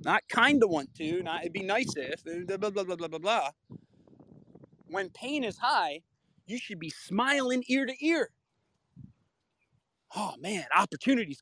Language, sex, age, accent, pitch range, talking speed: English, male, 30-49, American, 170-230 Hz, 150 wpm